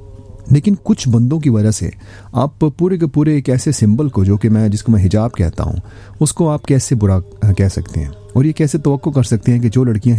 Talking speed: 235 wpm